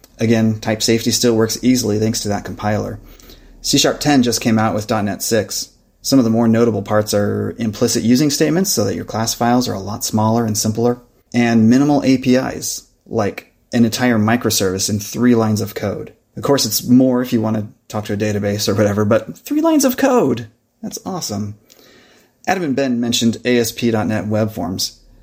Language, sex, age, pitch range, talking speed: English, male, 30-49, 105-125 Hz, 185 wpm